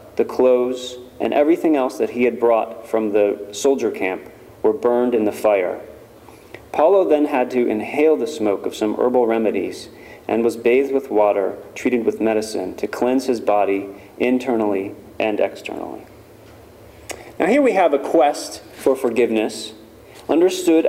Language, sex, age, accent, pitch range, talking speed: English, male, 30-49, American, 115-155 Hz, 150 wpm